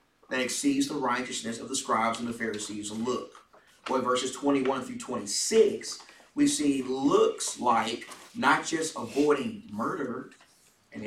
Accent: American